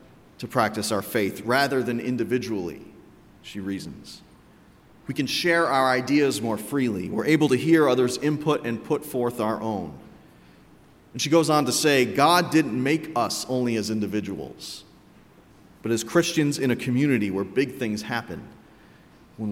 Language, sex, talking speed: English, male, 155 wpm